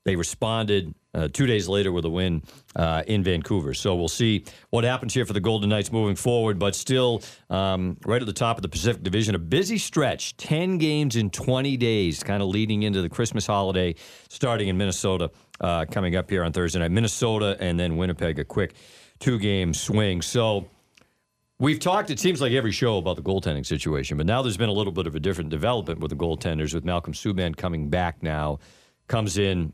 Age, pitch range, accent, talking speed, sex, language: 50-69, 90-120 Hz, American, 205 wpm, male, English